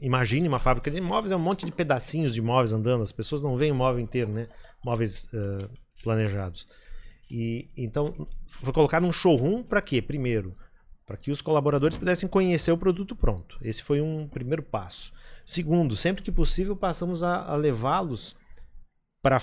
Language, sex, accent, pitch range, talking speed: Portuguese, male, Brazilian, 115-155 Hz, 175 wpm